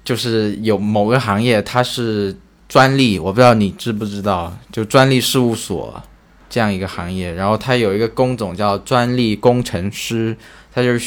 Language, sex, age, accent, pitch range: Chinese, male, 20-39, native, 100-125 Hz